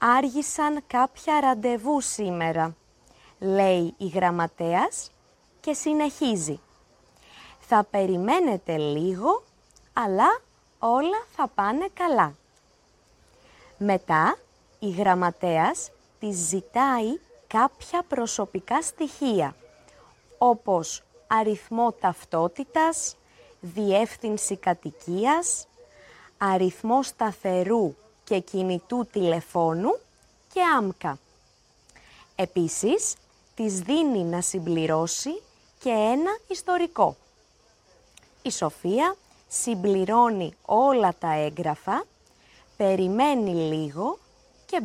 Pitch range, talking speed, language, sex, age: 180-285 Hz, 70 wpm, Greek, female, 20-39